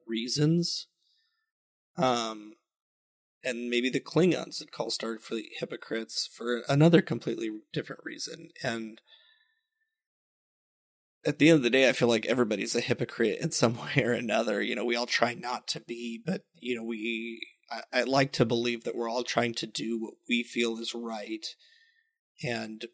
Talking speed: 165 wpm